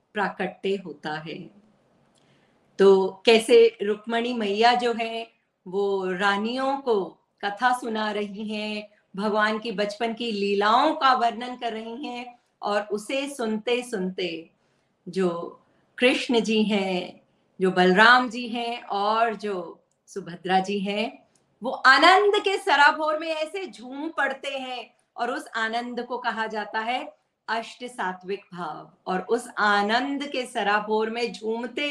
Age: 50-69